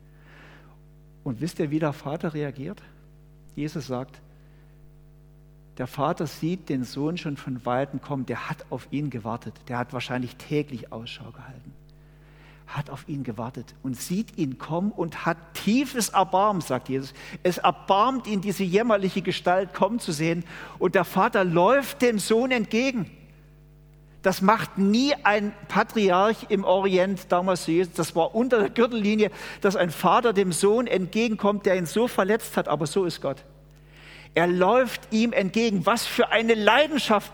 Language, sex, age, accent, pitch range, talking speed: German, male, 50-69, German, 150-205 Hz, 155 wpm